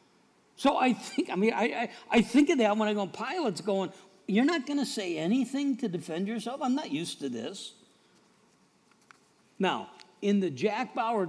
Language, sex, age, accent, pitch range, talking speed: English, male, 60-79, American, 180-240 Hz, 180 wpm